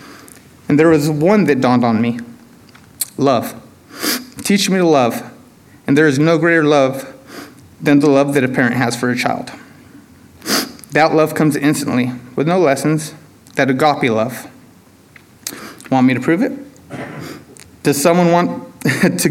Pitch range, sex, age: 130-165 Hz, male, 30-49